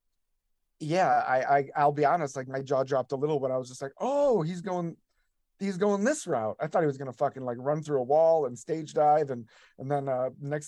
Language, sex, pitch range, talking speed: English, male, 120-145 Hz, 240 wpm